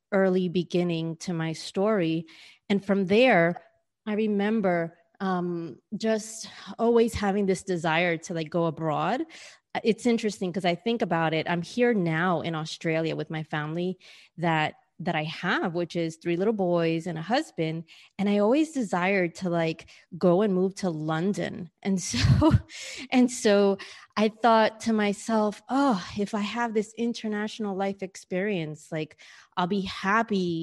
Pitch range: 170-205 Hz